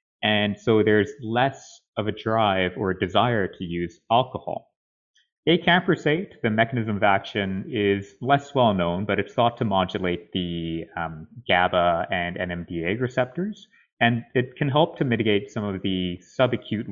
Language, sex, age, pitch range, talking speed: English, male, 30-49, 90-120 Hz, 155 wpm